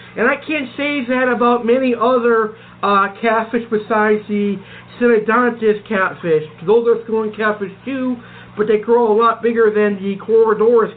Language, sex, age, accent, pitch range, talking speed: English, male, 50-69, American, 210-255 Hz, 155 wpm